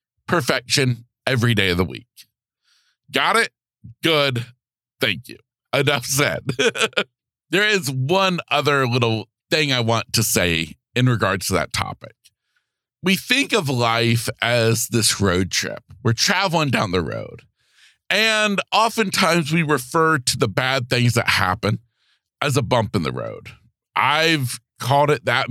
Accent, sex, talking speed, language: American, male, 145 wpm, English